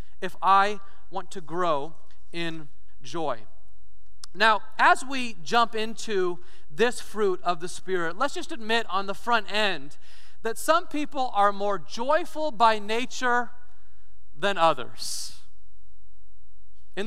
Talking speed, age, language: 125 wpm, 40-59, English